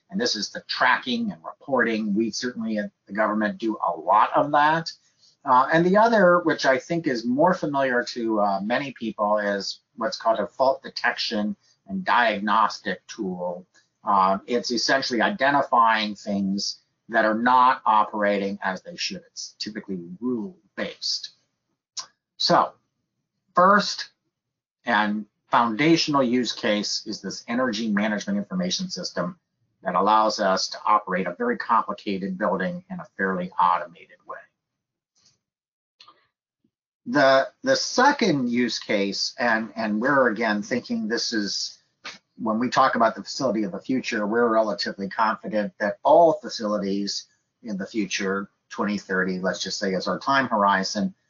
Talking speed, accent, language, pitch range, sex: 140 wpm, American, English, 100-160 Hz, male